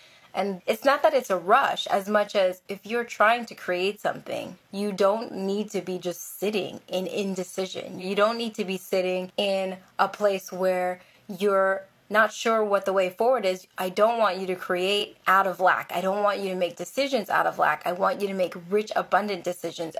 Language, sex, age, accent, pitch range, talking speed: English, female, 20-39, American, 180-205 Hz, 210 wpm